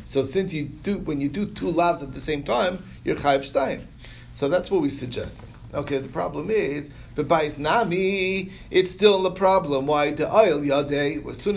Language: English